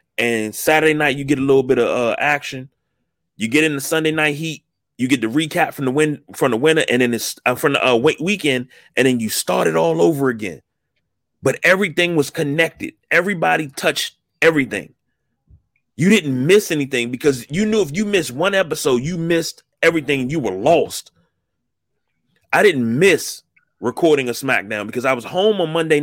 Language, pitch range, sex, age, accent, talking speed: English, 120-165 Hz, male, 30-49, American, 195 wpm